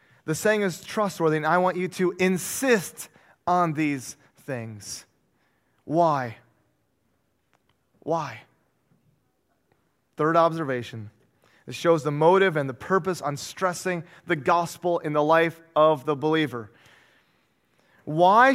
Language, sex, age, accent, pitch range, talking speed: English, male, 30-49, American, 170-245 Hz, 115 wpm